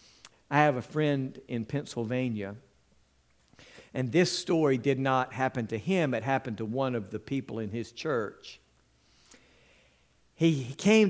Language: English